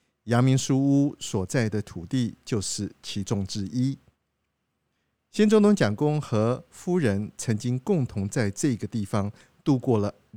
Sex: male